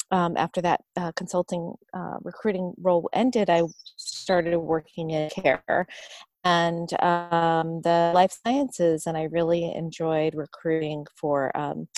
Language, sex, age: English, female, 30-49